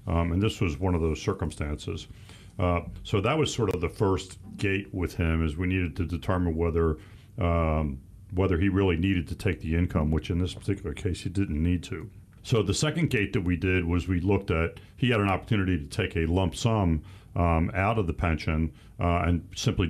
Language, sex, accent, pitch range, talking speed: English, male, American, 85-100 Hz, 215 wpm